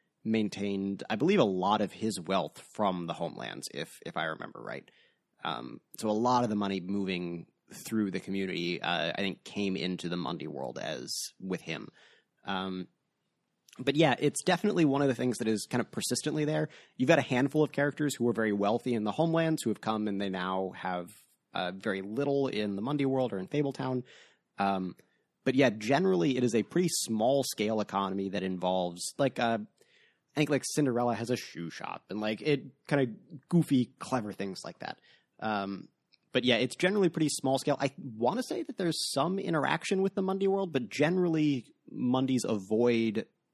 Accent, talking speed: American, 195 wpm